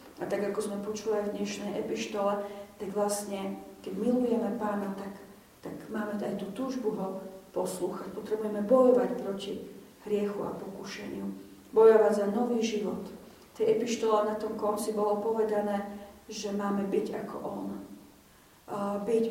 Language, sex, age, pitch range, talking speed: Slovak, female, 40-59, 200-230 Hz, 140 wpm